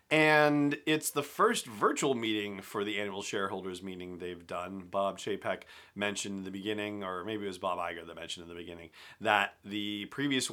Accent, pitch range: American, 90-110 Hz